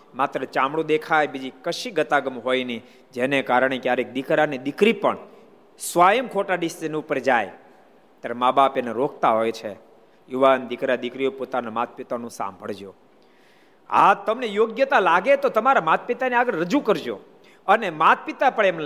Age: 50-69